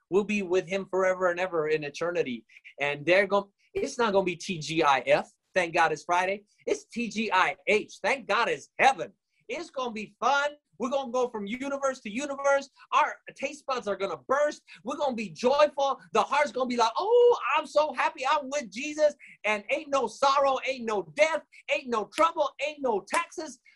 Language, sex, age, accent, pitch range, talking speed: English, male, 30-49, American, 180-270 Hz, 200 wpm